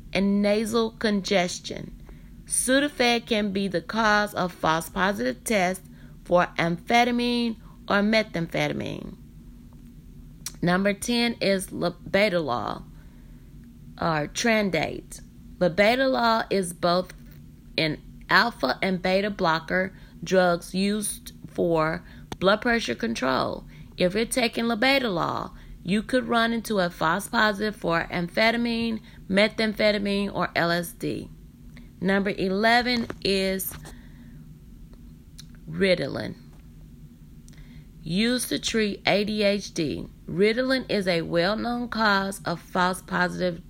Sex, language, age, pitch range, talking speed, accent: female, English, 30-49, 150-215 Hz, 90 wpm, American